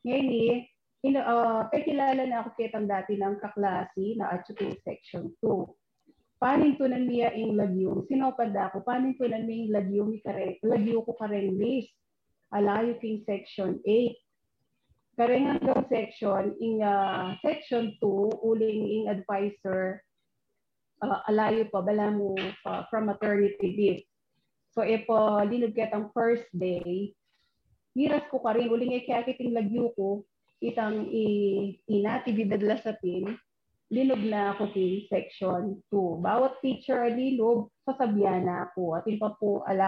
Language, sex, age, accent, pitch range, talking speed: Filipino, female, 30-49, native, 200-235 Hz, 135 wpm